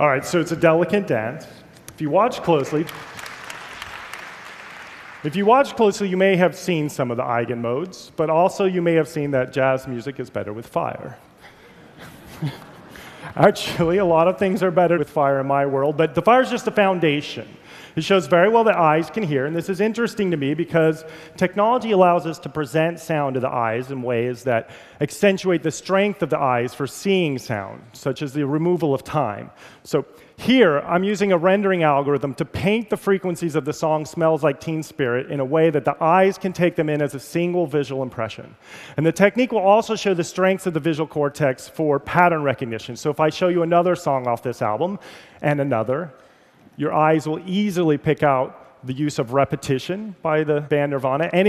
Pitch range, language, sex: 140-185 Hz, Korean, male